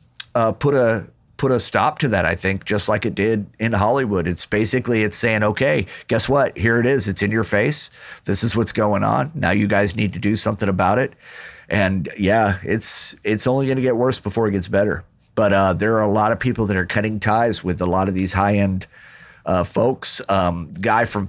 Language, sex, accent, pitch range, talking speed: English, male, American, 95-115 Hz, 225 wpm